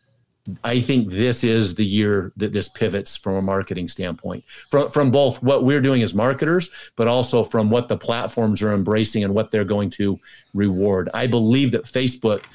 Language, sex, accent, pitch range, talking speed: English, male, American, 110-135 Hz, 185 wpm